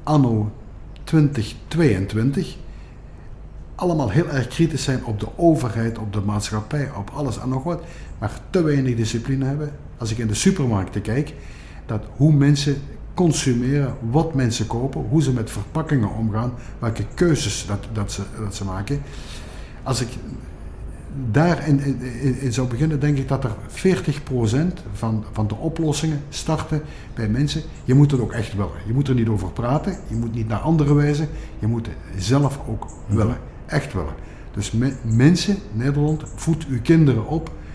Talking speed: 160 wpm